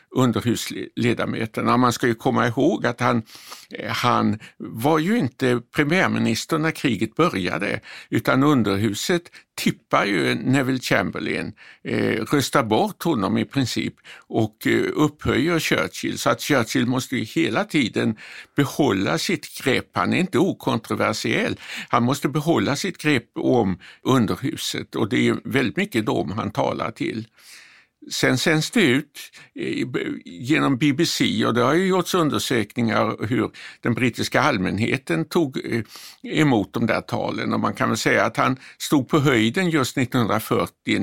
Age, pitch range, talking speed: 60-79, 115-145 Hz, 140 wpm